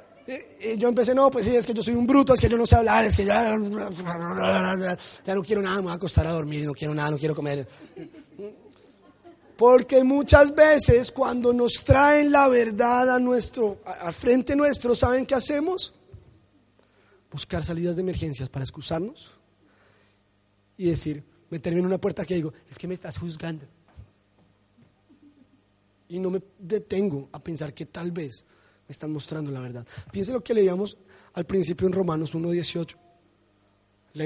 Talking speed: 165 wpm